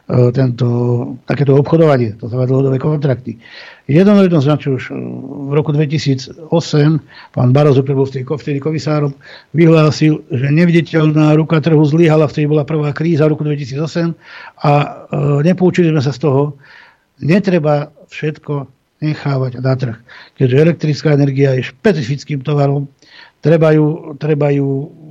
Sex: male